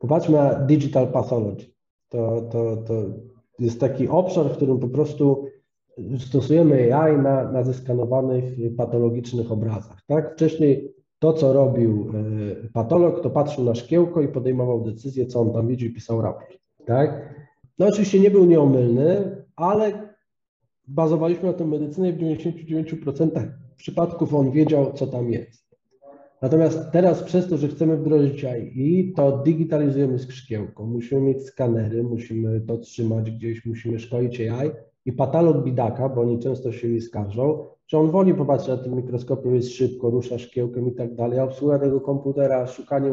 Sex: male